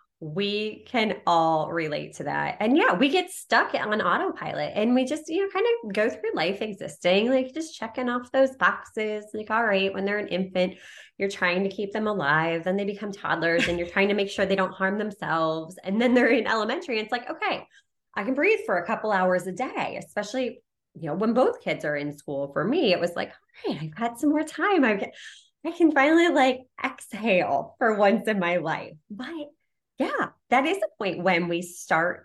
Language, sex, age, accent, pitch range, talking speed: English, female, 20-39, American, 165-240 Hz, 220 wpm